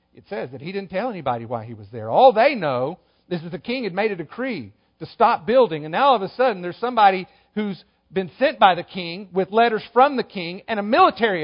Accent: American